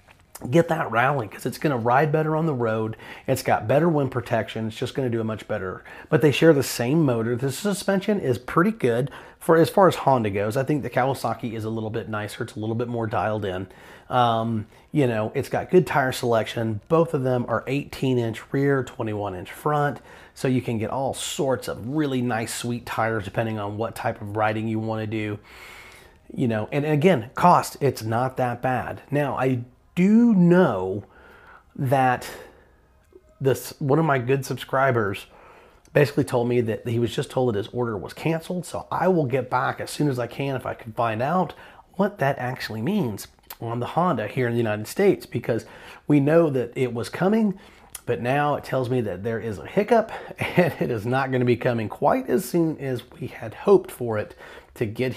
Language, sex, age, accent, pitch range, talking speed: English, male, 30-49, American, 115-150 Hz, 210 wpm